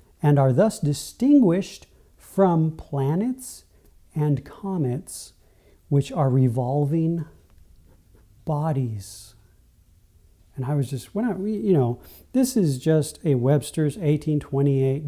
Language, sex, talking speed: English, male, 95 wpm